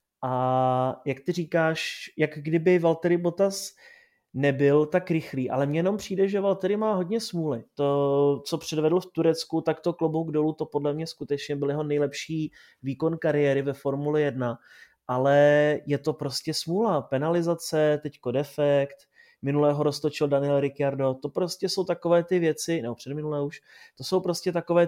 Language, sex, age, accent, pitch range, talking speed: Czech, male, 30-49, native, 140-165 Hz, 160 wpm